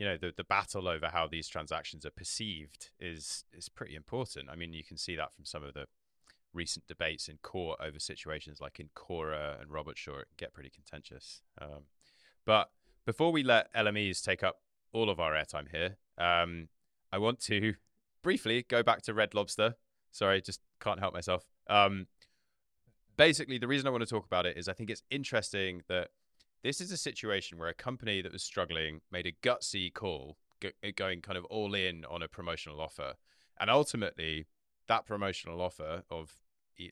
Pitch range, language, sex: 80-110 Hz, English, male